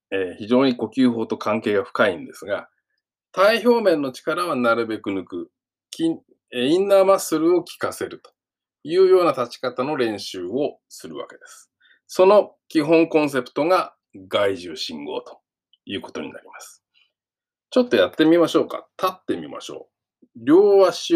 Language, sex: Japanese, male